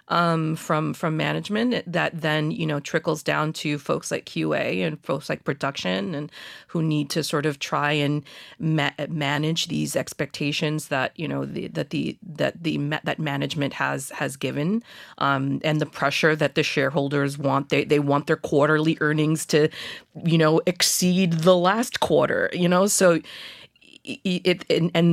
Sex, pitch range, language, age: female, 150-180 Hz, English, 30-49